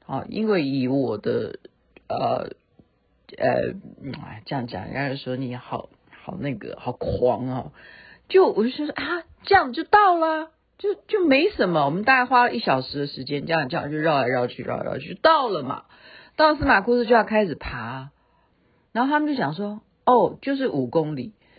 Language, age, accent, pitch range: Chinese, 50-69, native, 135-230 Hz